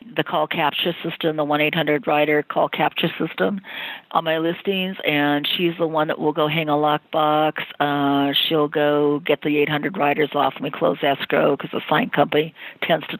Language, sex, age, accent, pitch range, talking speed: English, female, 50-69, American, 150-170 Hz, 175 wpm